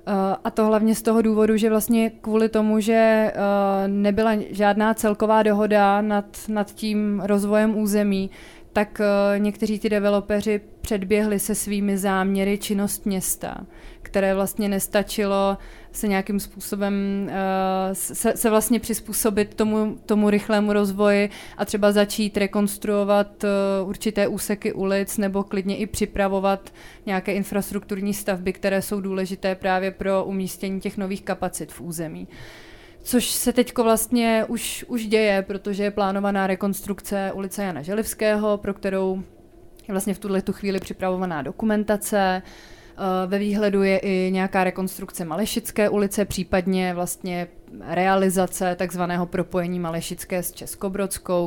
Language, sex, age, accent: Czech, female, 30-49, native